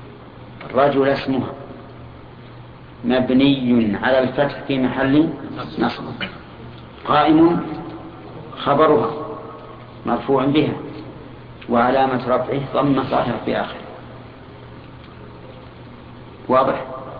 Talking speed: 65 wpm